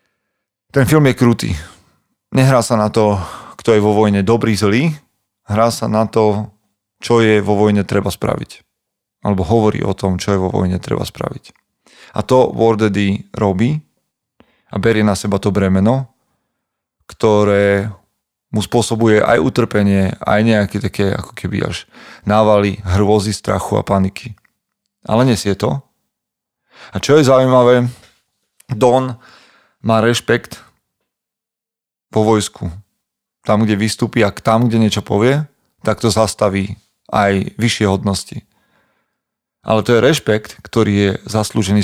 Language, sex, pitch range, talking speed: Slovak, male, 100-115 Hz, 135 wpm